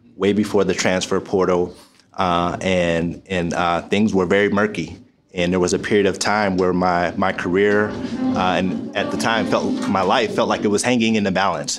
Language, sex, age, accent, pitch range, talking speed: English, male, 30-49, American, 90-105 Hz, 205 wpm